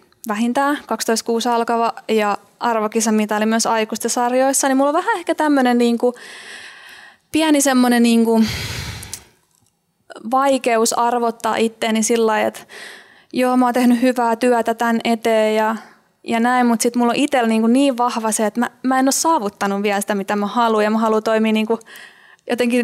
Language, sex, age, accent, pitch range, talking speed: Finnish, female, 20-39, native, 220-250 Hz, 160 wpm